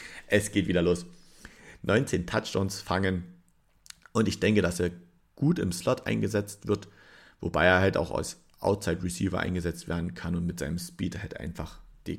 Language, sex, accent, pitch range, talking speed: German, male, German, 90-110 Hz, 160 wpm